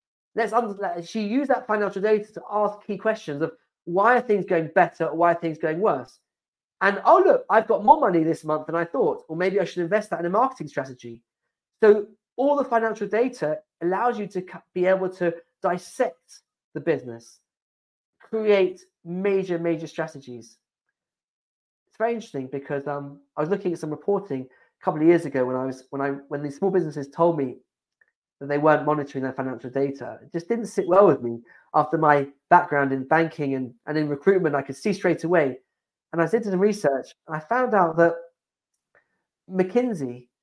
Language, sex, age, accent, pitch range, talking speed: English, male, 40-59, British, 145-200 Hz, 190 wpm